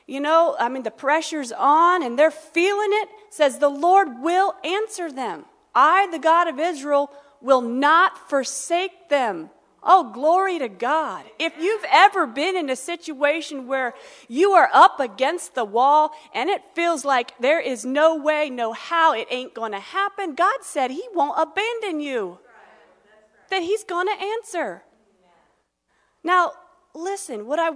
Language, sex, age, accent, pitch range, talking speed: English, female, 40-59, American, 260-365 Hz, 160 wpm